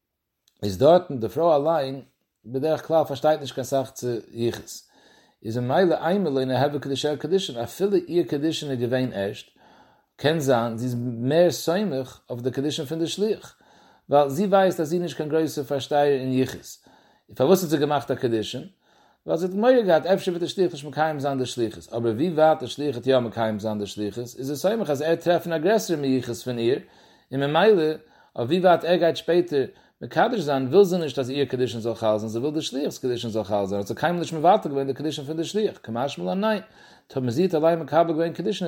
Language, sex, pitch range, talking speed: English, male, 125-165 Hz, 110 wpm